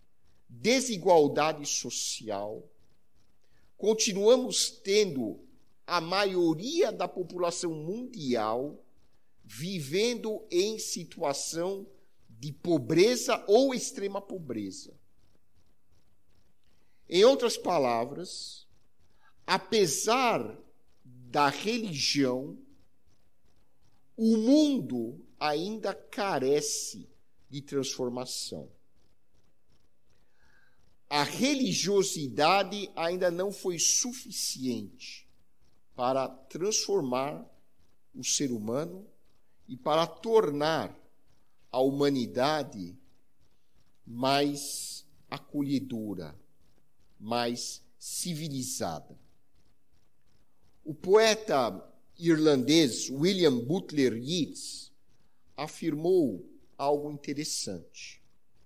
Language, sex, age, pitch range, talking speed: Portuguese, male, 50-69, 125-205 Hz, 60 wpm